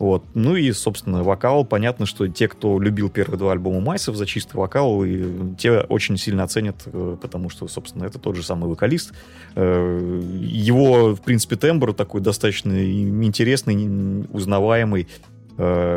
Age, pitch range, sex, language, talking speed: 20-39, 95-115 Hz, male, Russian, 145 wpm